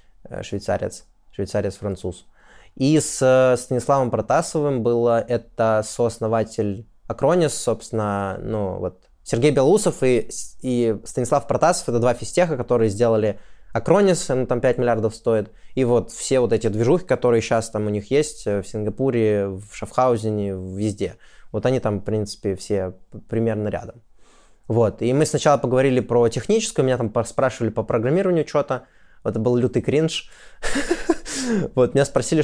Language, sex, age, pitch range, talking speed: Russian, male, 20-39, 110-135 Hz, 140 wpm